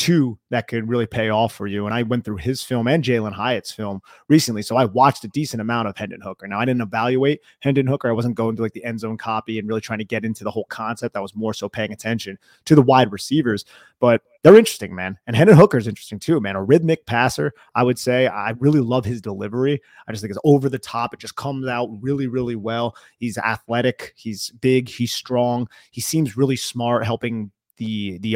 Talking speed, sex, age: 235 wpm, male, 30-49